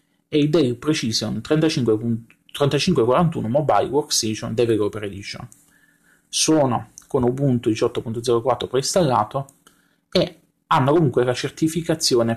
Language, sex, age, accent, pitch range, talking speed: Italian, male, 30-49, native, 120-150 Hz, 90 wpm